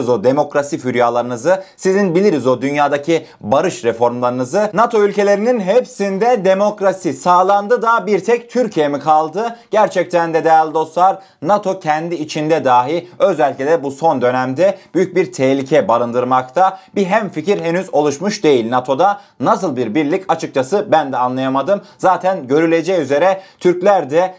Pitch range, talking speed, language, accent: 155-210 Hz, 140 wpm, Turkish, native